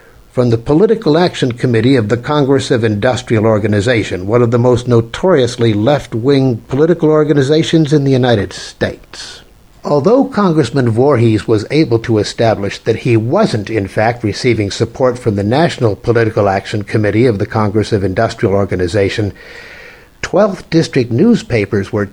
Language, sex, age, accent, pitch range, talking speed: English, male, 60-79, American, 110-145 Hz, 145 wpm